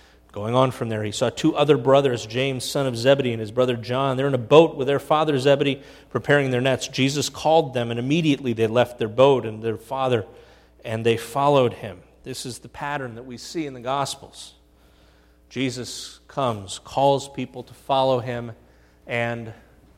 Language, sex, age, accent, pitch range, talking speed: English, male, 40-59, American, 100-140 Hz, 185 wpm